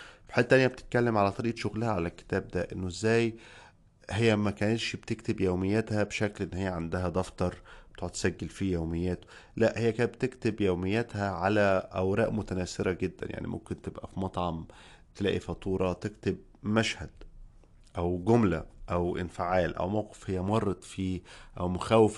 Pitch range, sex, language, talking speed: 90-110 Hz, male, Arabic, 140 wpm